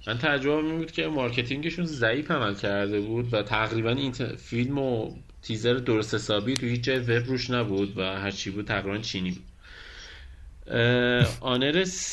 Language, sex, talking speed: Persian, male, 150 wpm